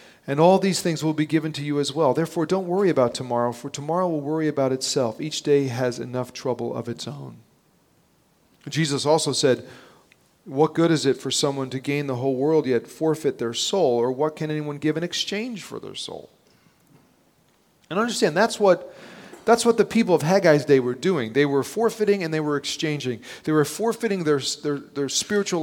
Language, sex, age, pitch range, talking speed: English, male, 40-59, 130-175 Hz, 195 wpm